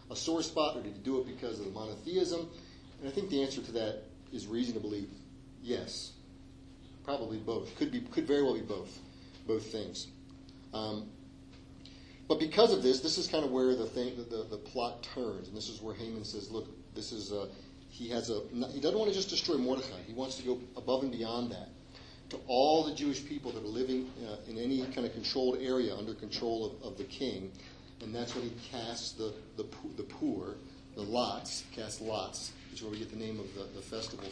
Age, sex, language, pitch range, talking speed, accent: 40-59, male, English, 105-130 Hz, 215 wpm, American